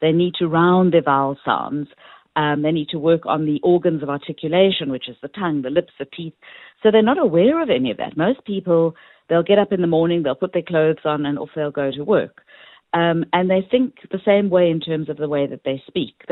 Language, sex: English, female